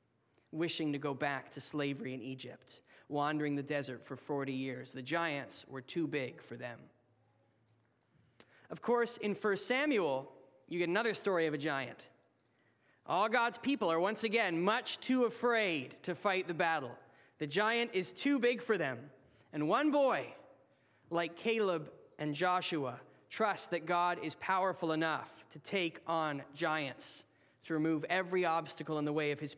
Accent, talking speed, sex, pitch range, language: American, 160 wpm, male, 145-210 Hz, English